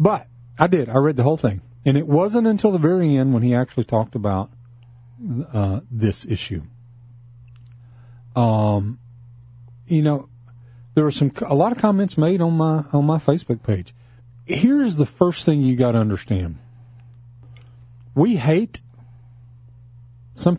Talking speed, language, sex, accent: 150 wpm, English, male, American